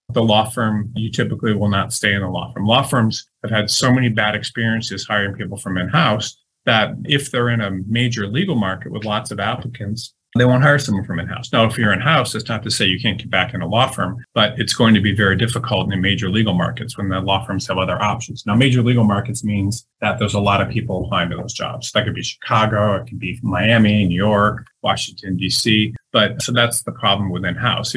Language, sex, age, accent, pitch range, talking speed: English, male, 30-49, American, 100-120 Hz, 240 wpm